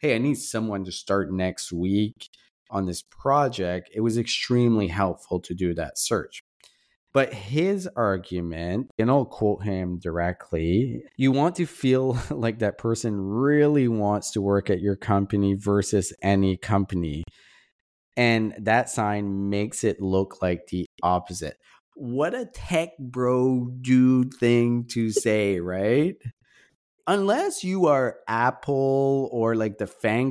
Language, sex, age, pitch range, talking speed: English, male, 30-49, 100-135 Hz, 140 wpm